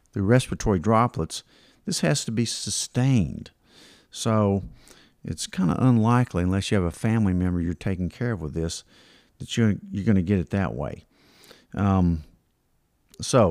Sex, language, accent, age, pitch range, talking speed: male, English, American, 50-69, 90-115 Hz, 155 wpm